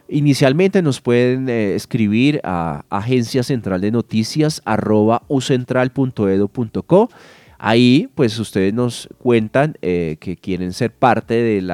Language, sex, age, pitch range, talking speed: Spanish, male, 30-49, 105-135 Hz, 120 wpm